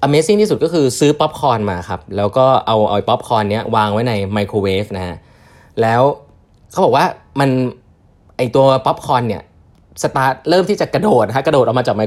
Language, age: Thai, 20-39